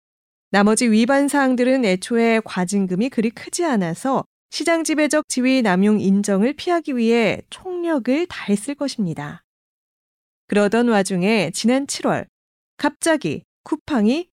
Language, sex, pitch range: Korean, female, 205-285 Hz